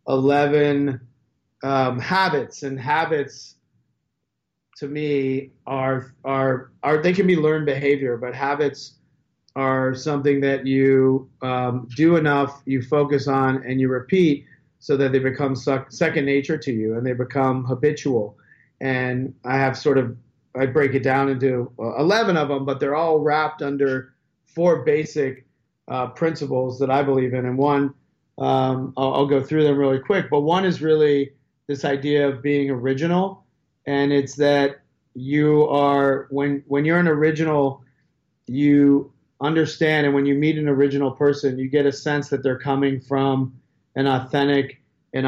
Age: 40-59